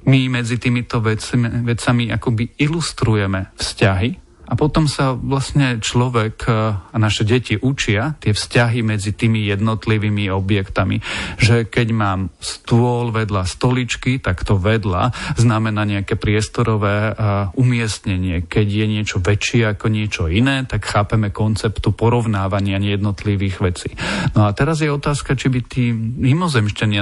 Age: 40-59